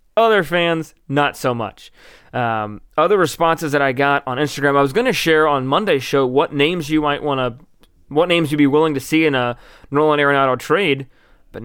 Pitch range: 130-165 Hz